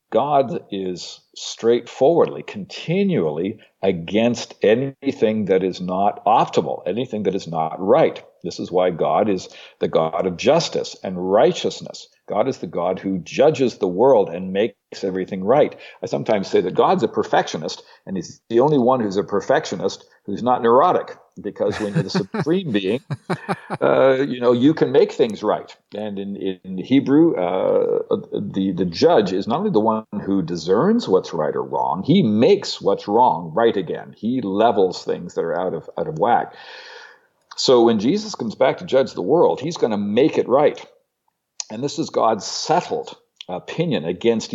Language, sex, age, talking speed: English, male, 60-79, 170 wpm